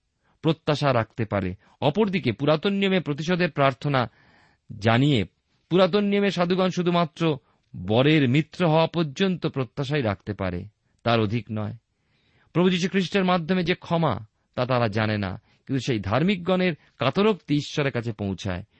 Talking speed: 100 wpm